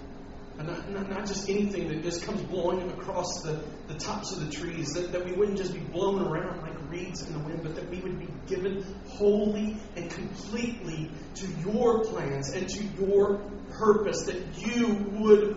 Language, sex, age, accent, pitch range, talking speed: English, male, 40-59, American, 140-190 Hz, 190 wpm